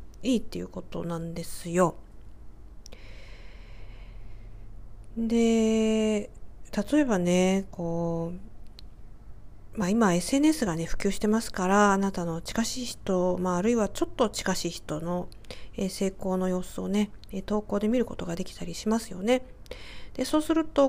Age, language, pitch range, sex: 40-59, Japanese, 170-225 Hz, female